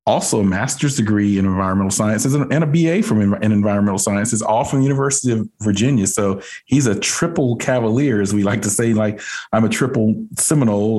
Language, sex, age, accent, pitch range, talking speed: English, male, 40-59, American, 100-125 Hz, 190 wpm